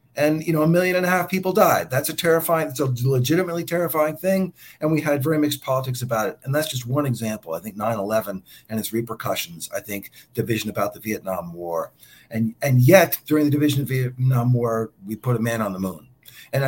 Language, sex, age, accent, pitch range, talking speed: English, male, 50-69, American, 115-155 Hz, 220 wpm